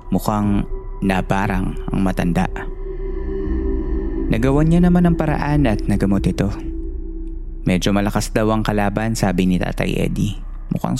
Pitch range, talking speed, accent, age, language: 80-120 Hz, 120 wpm, native, 20-39, Filipino